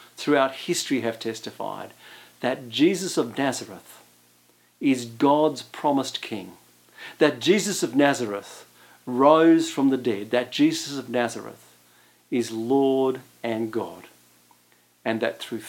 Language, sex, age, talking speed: English, male, 50-69, 120 wpm